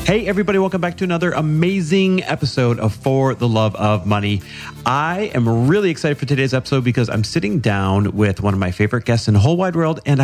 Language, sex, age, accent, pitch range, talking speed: English, male, 40-59, American, 105-150 Hz, 215 wpm